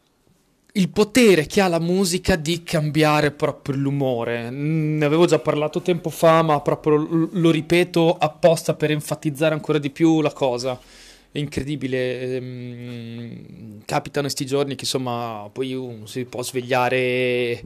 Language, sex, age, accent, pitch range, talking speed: Italian, male, 20-39, native, 135-195 Hz, 135 wpm